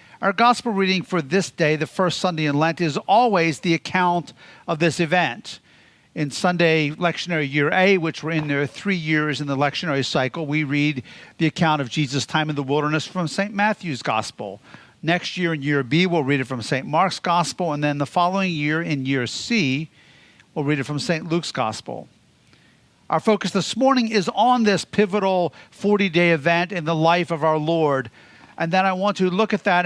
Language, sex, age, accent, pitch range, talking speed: English, male, 50-69, American, 150-195 Hz, 195 wpm